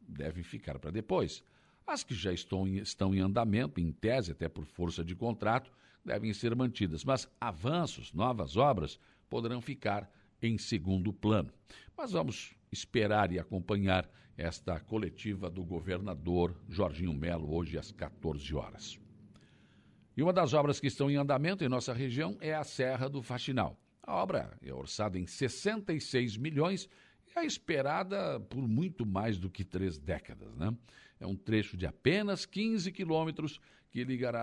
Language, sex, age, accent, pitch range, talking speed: Portuguese, male, 60-79, Brazilian, 95-135 Hz, 150 wpm